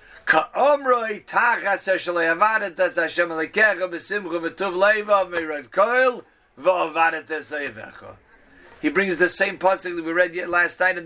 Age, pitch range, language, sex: 50-69, 170-205 Hz, English, male